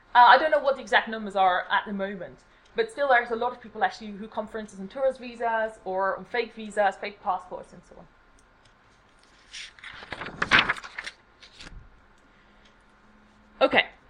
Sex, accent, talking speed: female, British, 150 wpm